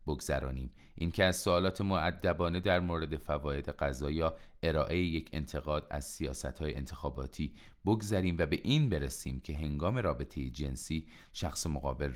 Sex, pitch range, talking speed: male, 70-90 Hz, 145 wpm